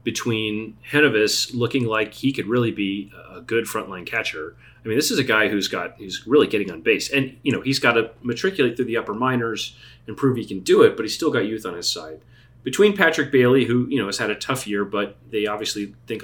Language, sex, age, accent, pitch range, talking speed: English, male, 30-49, American, 110-135 Hz, 240 wpm